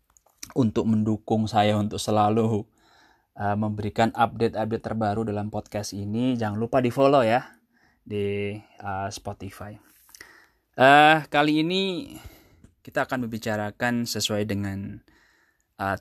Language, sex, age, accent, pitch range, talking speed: Indonesian, male, 20-39, native, 100-115 Hz, 110 wpm